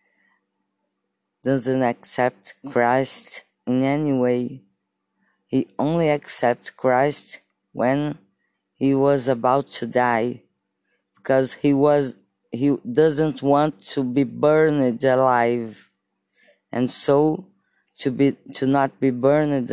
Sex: female